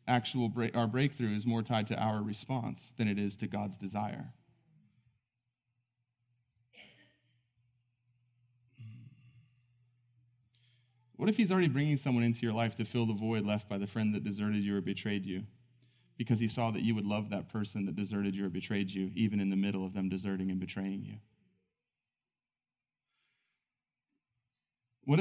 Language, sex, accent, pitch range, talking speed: English, male, American, 100-125 Hz, 155 wpm